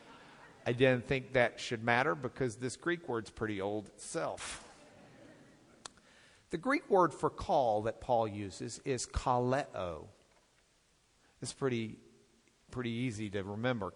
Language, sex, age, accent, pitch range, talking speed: English, male, 50-69, American, 115-145 Hz, 125 wpm